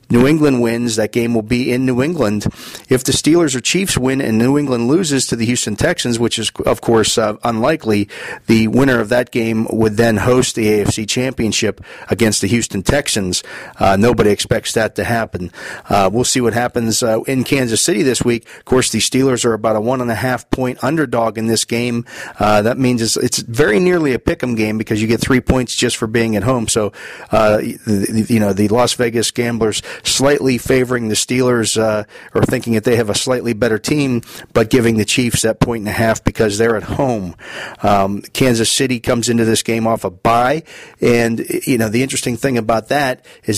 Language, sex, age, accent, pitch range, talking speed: English, male, 40-59, American, 110-130 Hz, 210 wpm